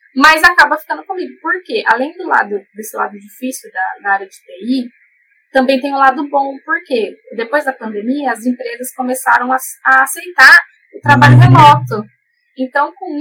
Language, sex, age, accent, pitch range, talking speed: Portuguese, female, 10-29, Brazilian, 215-310 Hz, 165 wpm